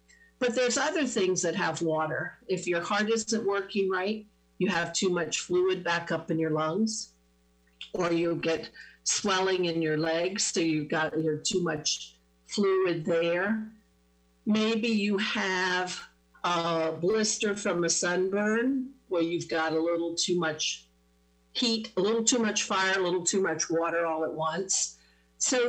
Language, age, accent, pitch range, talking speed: English, 50-69, American, 160-205 Hz, 160 wpm